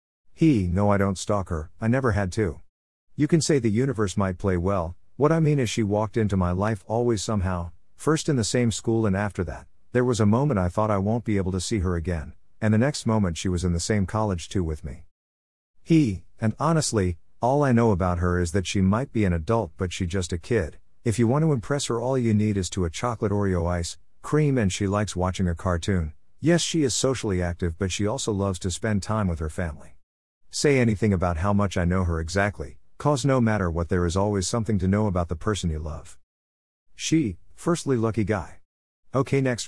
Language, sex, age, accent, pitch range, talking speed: English, male, 50-69, American, 90-115 Hz, 230 wpm